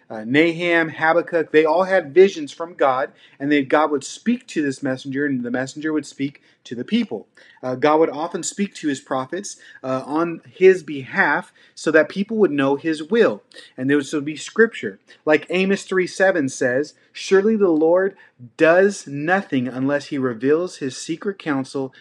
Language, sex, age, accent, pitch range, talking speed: English, male, 30-49, American, 145-195 Hz, 175 wpm